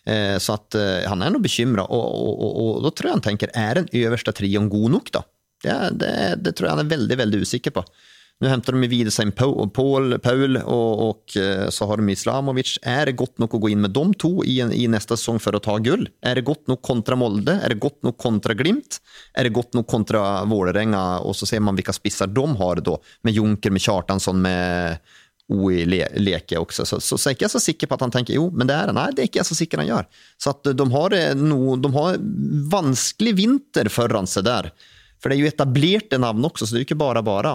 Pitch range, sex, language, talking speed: 105-135 Hz, male, English, 255 wpm